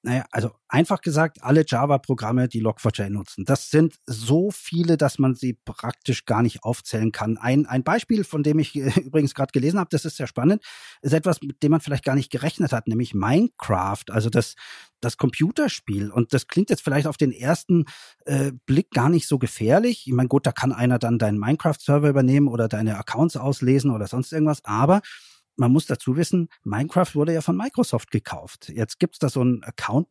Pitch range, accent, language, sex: 120-160 Hz, German, German, male